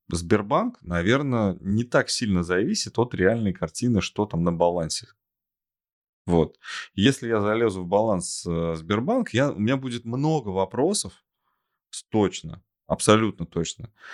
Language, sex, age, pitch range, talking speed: Russian, male, 20-39, 90-130 Hz, 125 wpm